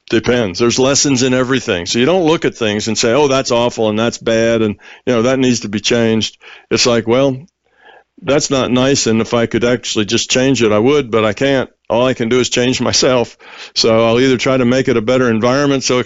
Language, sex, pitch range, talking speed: English, male, 120-145 Hz, 245 wpm